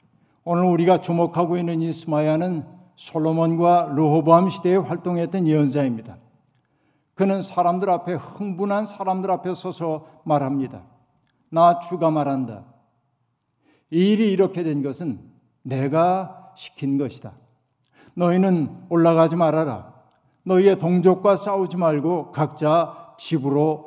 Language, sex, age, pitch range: Korean, male, 60-79, 145-180 Hz